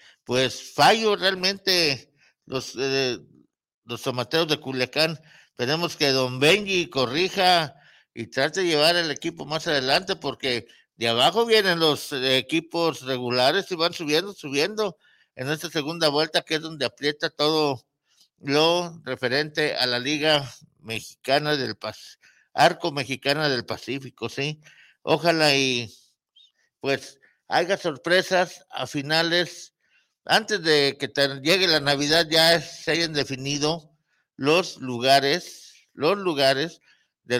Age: 60-79